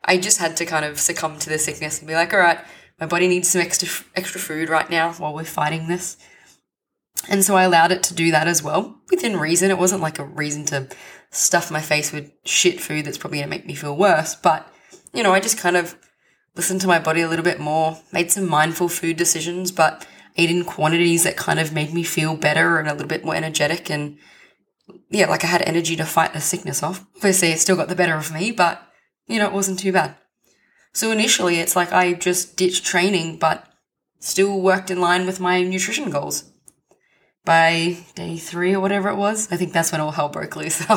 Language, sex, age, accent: English, female, 20-39, Australian